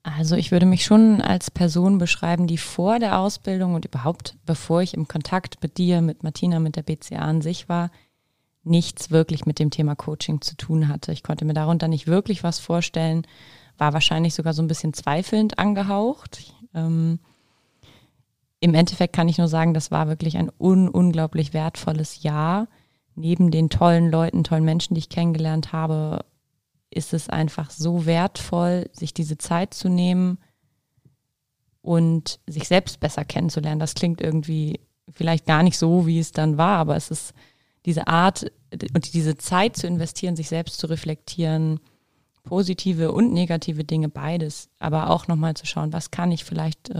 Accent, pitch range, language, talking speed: German, 155-175 Hz, German, 165 wpm